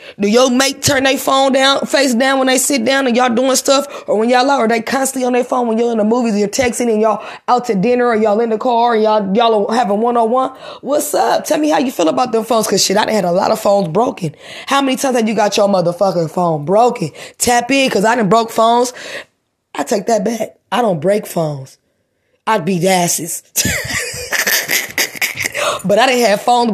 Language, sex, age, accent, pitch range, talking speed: English, female, 20-39, American, 210-255 Hz, 235 wpm